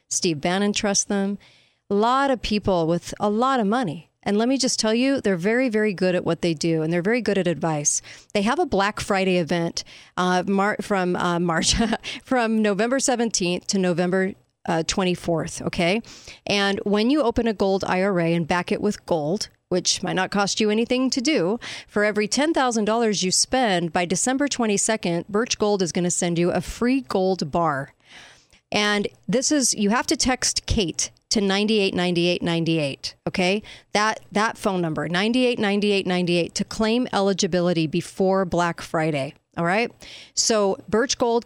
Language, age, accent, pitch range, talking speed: English, 40-59, American, 175-220 Hz, 170 wpm